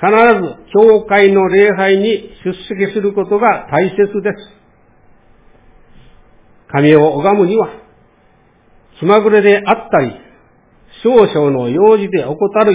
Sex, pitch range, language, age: male, 175-220 Hz, Japanese, 60-79